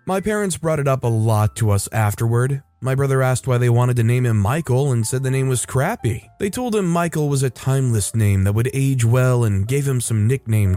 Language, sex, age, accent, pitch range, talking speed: English, male, 20-39, American, 115-140 Hz, 240 wpm